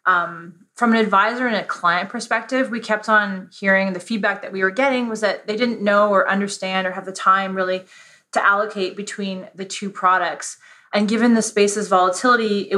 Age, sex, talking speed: 20-39, female, 195 wpm